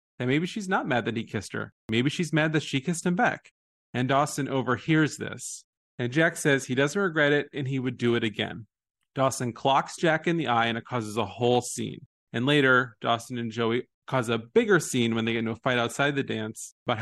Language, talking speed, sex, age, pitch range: English, 230 wpm, male, 30-49, 115-150 Hz